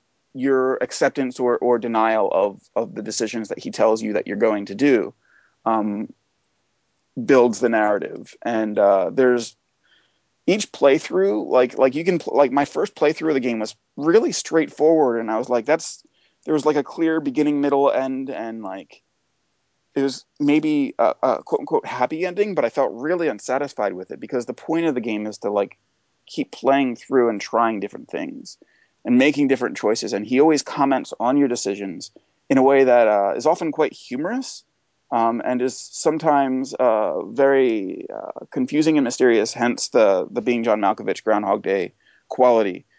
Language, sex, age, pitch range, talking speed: English, male, 30-49, 115-145 Hz, 180 wpm